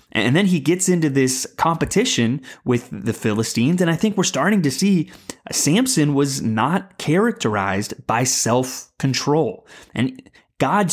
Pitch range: 115-165 Hz